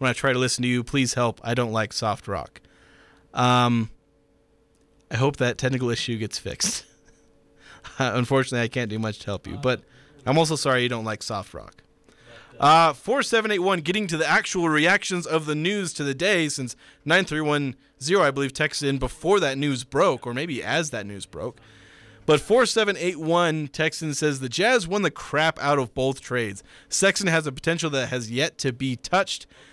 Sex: male